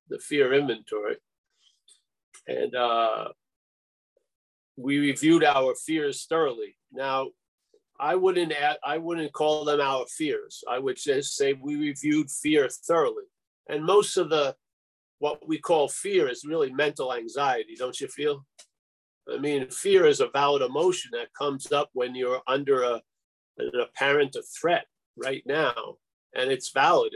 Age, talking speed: 50-69, 145 wpm